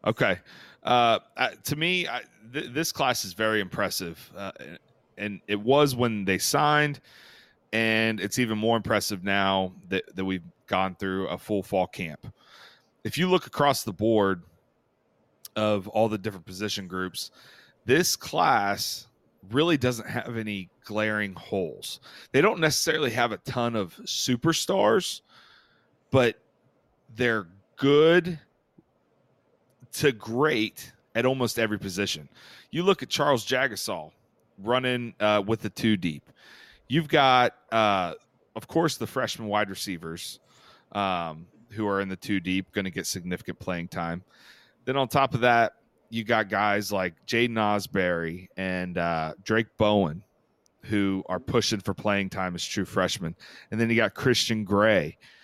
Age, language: 30-49, English